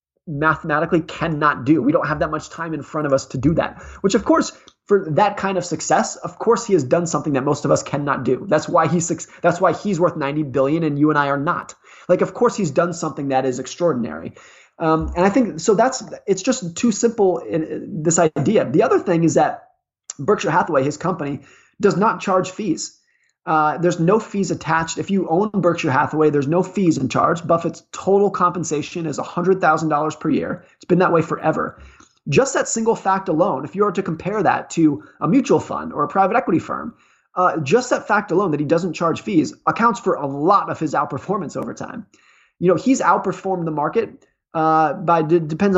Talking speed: 215 wpm